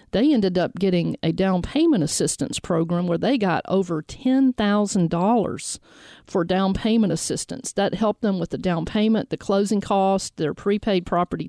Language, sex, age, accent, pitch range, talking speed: English, female, 50-69, American, 175-215 Hz, 160 wpm